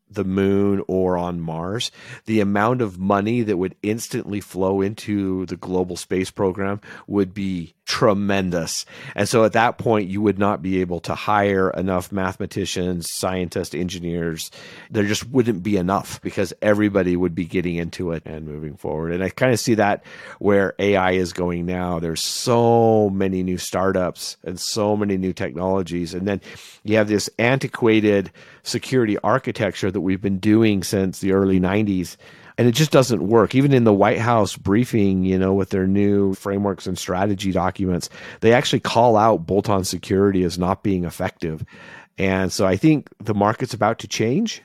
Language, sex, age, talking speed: English, male, 40-59, 175 wpm